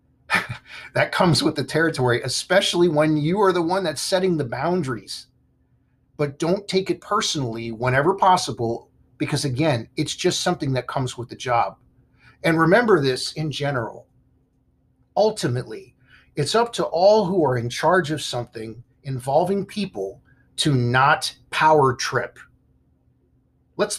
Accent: American